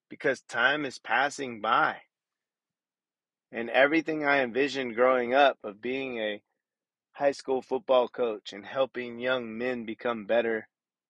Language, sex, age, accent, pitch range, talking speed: English, male, 30-49, American, 115-140 Hz, 130 wpm